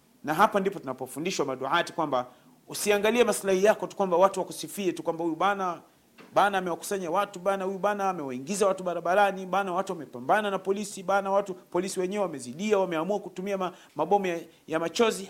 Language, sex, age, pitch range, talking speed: Swahili, male, 40-59, 160-200 Hz, 160 wpm